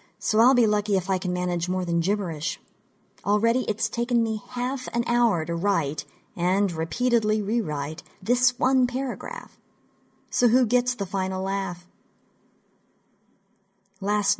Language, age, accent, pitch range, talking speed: English, 40-59, American, 175-215 Hz, 140 wpm